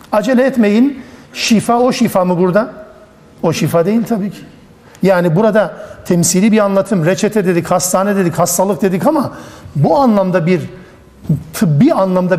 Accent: native